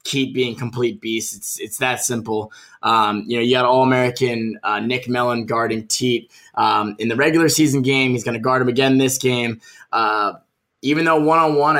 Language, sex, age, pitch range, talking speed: English, male, 20-39, 120-145 Hz, 195 wpm